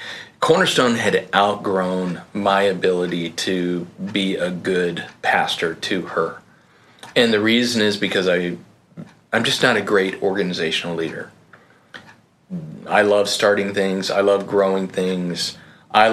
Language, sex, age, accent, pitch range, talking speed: English, male, 30-49, American, 95-105 Hz, 125 wpm